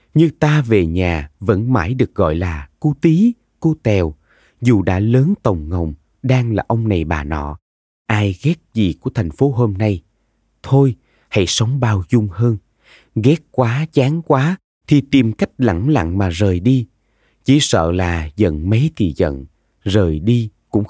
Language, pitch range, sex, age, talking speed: Vietnamese, 95-130 Hz, male, 20-39, 170 wpm